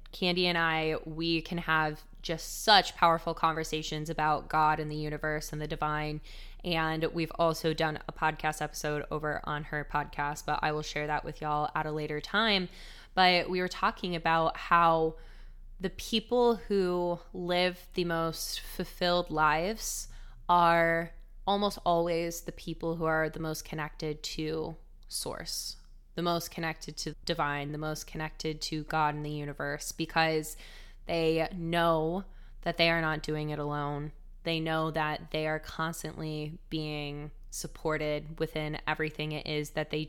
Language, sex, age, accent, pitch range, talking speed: English, female, 20-39, American, 150-165 Hz, 155 wpm